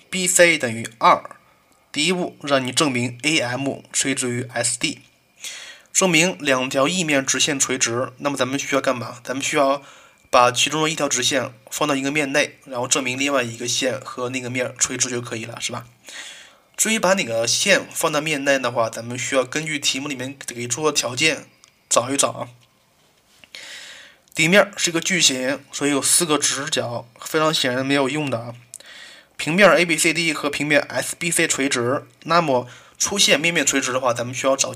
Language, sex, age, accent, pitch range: Chinese, male, 20-39, native, 125-155 Hz